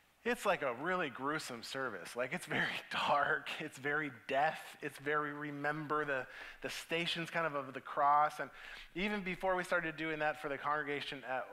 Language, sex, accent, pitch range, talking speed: English, male, American, 150-205 Hz, 180 wpm